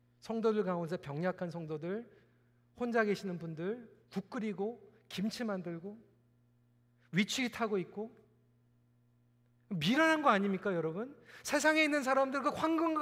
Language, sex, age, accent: Korean, male, 40-59, native